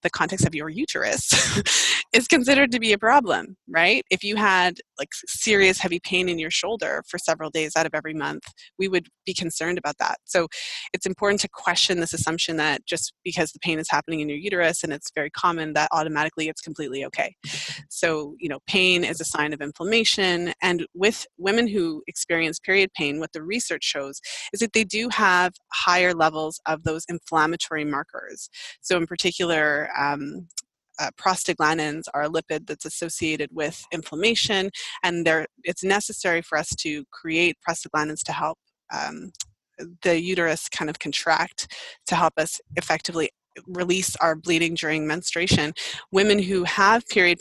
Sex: female